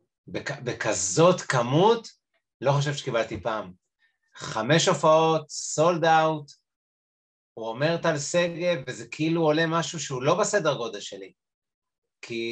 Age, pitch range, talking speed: 30-49, 135-190 Hz, 120 wpm